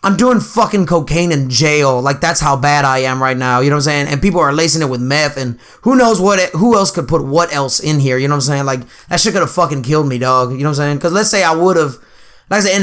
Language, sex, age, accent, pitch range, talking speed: English, male, 20-39, American, 135-175 Hz, 315 wpm